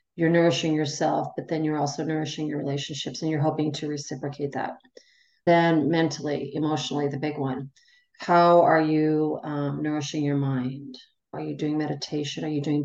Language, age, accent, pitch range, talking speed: English, 40-59, American, 145-170 Hz, 170 wpm